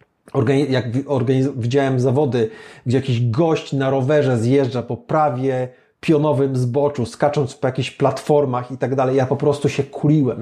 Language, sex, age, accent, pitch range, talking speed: Polish, male, 40-59, native, 125-160 Hz, 155 wpm